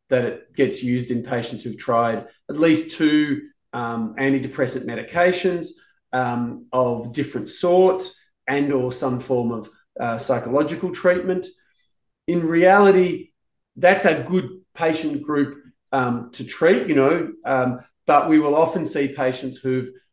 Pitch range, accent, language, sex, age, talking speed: 125-160 Hz, Australian, English, male, 40-59, 135 wpm